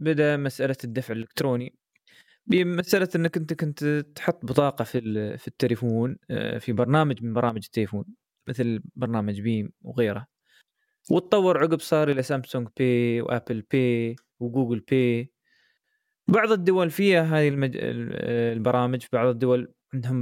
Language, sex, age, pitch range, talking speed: Arabic, male, 20-39, 125-170 Hz, 120 wpm